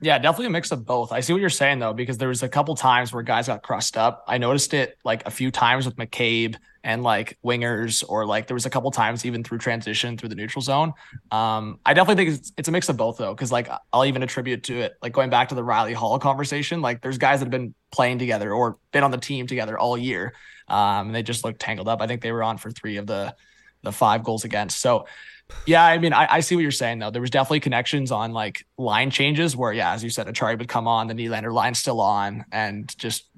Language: English